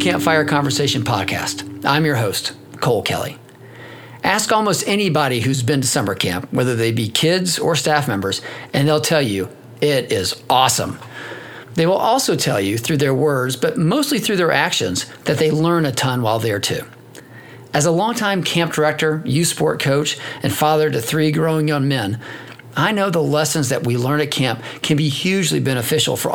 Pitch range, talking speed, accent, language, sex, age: 125-165 Hz, 180 wpm, American, English, male, 40-59